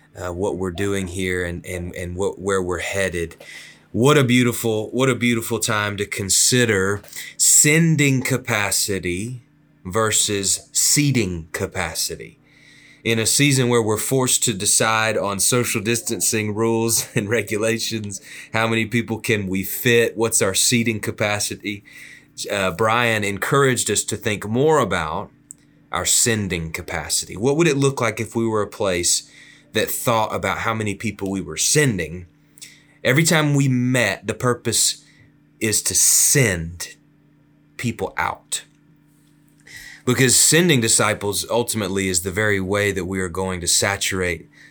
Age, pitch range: 30-49, 95-120 Hz